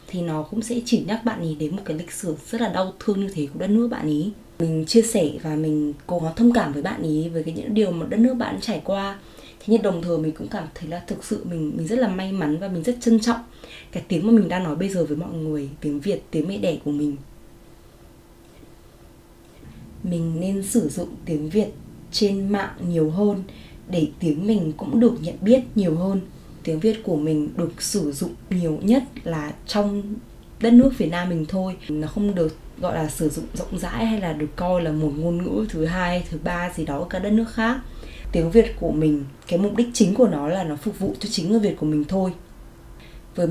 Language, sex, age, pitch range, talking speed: Vietnamese, female, 20-39, 155-210 Hz, 235 wpm